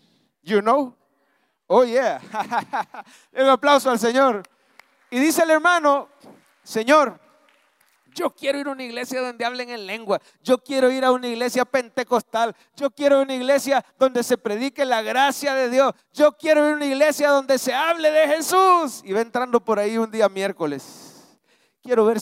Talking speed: 175 wpm